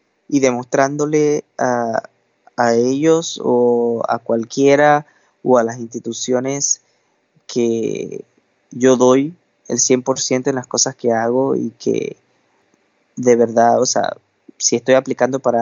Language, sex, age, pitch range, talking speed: Spanish, male, 20-39, 115-130 Hz, 125 wpm